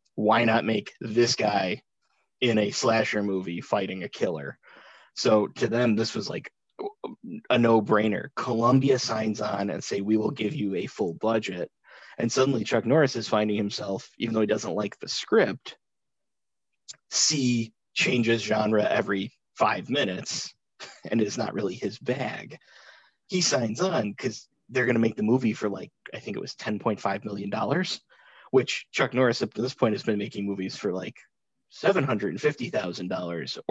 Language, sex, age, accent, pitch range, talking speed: English, male, 20-39, American, 105-125 Hz, 160 wpm